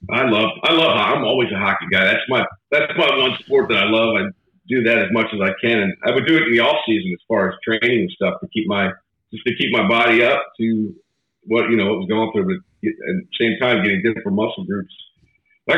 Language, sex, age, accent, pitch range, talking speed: English, male, 50-69, American, 105-130 Hz, 260 wpm